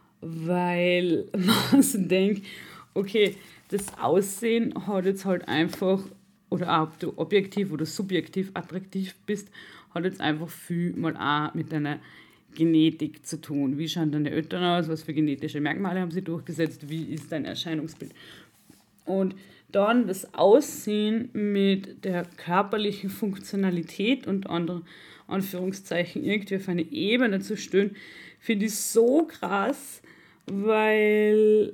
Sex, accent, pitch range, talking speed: female, German, 180-230 Hz, 130 wpm